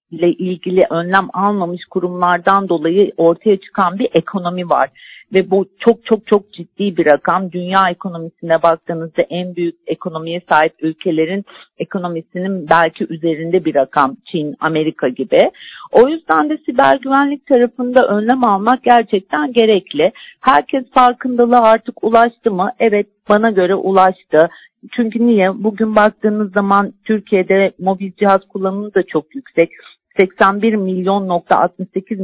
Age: 50-69